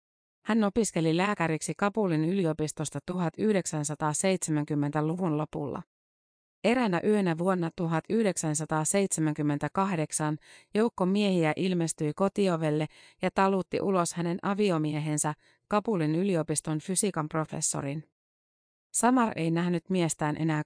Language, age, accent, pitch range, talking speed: Finnish, 30-49, native, 155-185 Hz, 85 wpm